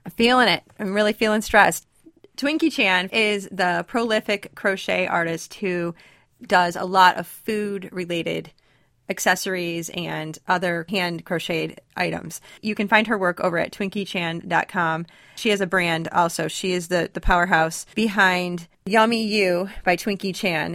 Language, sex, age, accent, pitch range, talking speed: English, female, 30-49, American, 175-210 Hz, 150 wpm